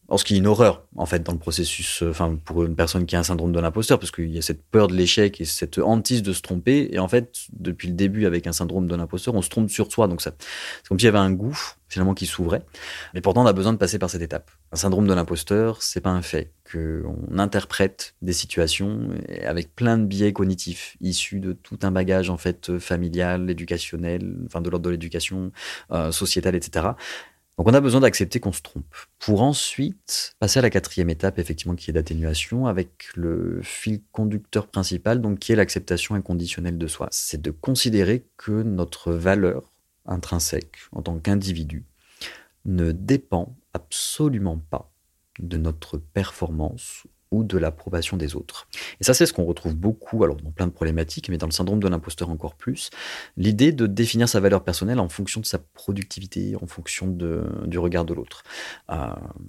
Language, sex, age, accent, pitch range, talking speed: French, male, 30-49, French, 85-100 Hz, 200 wpm